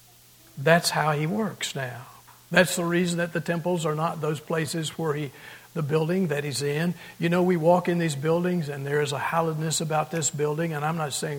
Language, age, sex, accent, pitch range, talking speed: English, 60-79, male, American, 140-165 Hz, 215 wpm